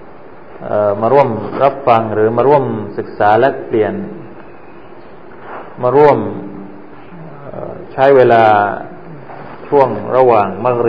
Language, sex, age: Thai, male, 20-39